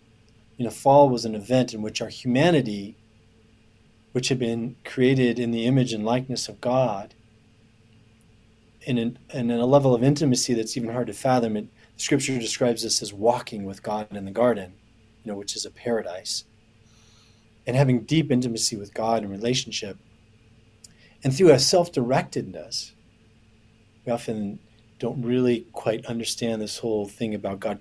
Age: 40-59